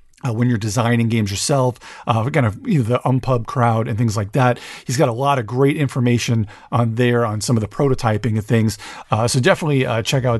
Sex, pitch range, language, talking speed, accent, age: male, 115-145 Hz, English, 230 wpm, American, 40-59